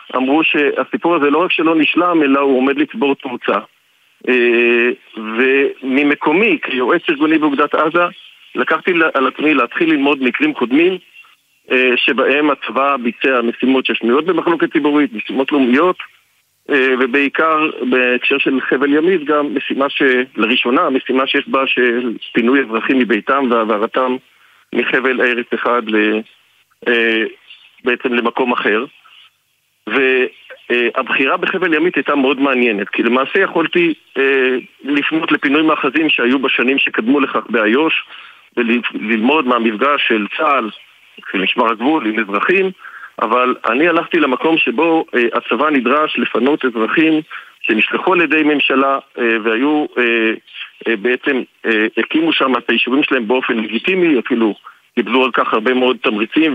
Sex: male